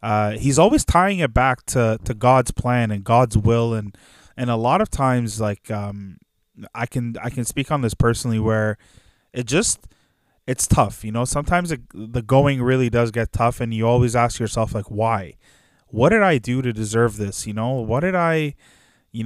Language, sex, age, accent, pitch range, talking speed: English, male, 20-39, American, 110-125 Hz, 200 wpm